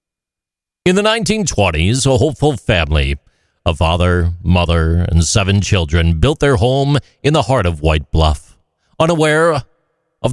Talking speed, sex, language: 135 wpm, male, English